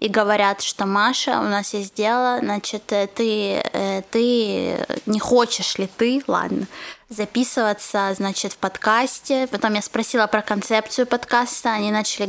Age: 20-39